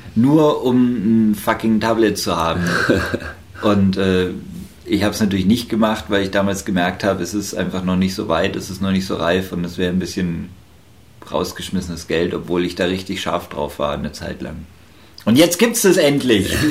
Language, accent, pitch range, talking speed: German, German, 90-110 Hz, 200 wpm